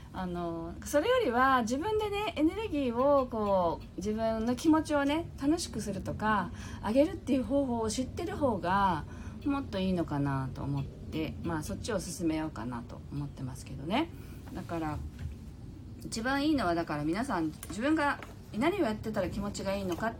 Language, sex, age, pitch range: Japanese, female, 40-59, 155-260 Hz